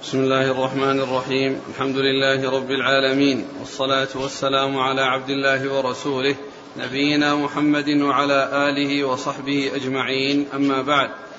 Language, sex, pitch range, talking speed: Arabic, male, 140-155 Hz, 115 wpm